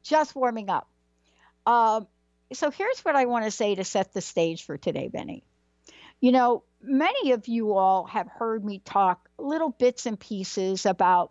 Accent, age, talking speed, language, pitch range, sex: American, 60-79, 175 wpm, English, 175-220 Hz, female